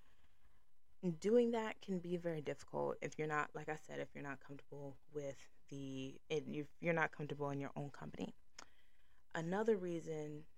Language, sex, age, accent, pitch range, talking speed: English, female, 20-39, American, 145-185 Hz, 160 wpm